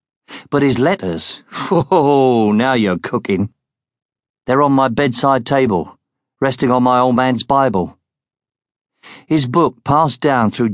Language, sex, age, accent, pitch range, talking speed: English, male, 50-69, British, 110-140 Hz, 130 wpm